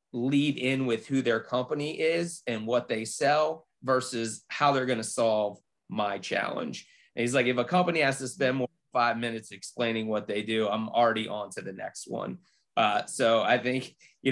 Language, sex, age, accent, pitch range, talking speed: English, male, 30-49, American, 110-130 Hz, 200 wpm